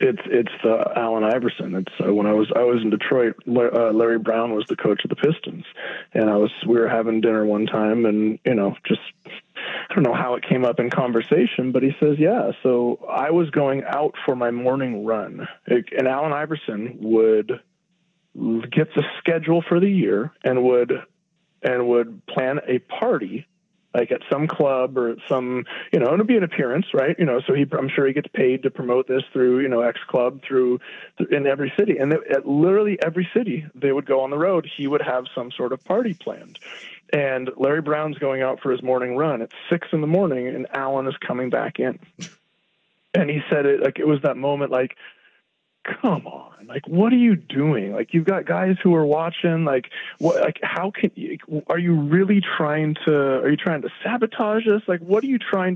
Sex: male